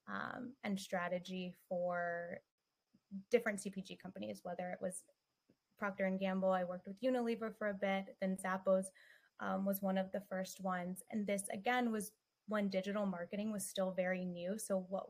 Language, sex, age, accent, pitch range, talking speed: English, female, 20-39, American, 185-215 Hz, 165 wpm